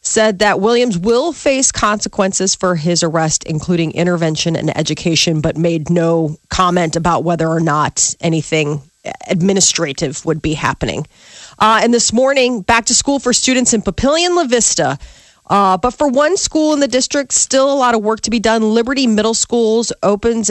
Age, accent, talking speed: 30-49, American, 175 wpm